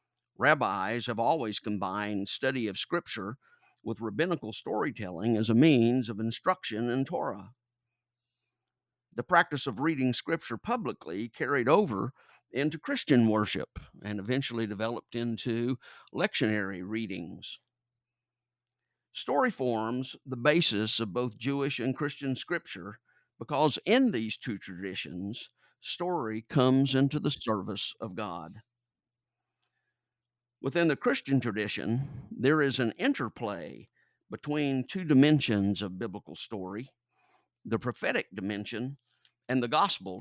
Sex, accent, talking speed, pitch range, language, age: male, American, 115 wpm, 110-135 Hz, English, 50-69